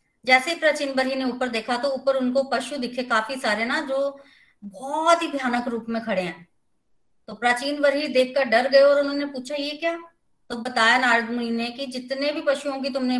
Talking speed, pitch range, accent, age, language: 200 wpm, 235-290 Hz, native, 30-49, Hindi